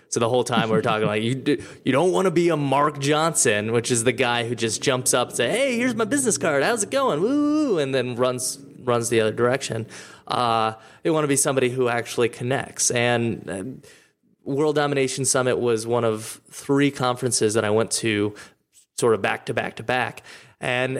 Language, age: English, 20-39